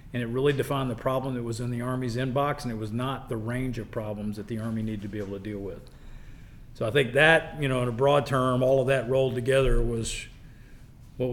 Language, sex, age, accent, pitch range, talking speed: English, male, 40-59, American, 115-130 Hz, 250 wpm